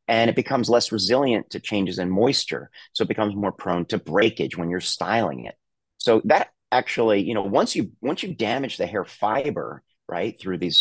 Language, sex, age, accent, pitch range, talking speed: English, male, 30-49, American, 90-115 Hz, 200 wpm